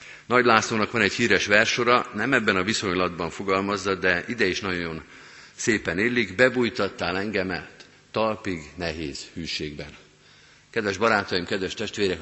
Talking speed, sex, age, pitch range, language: 130 wpm, male, 50-69, 85-115 Hz, Hungarian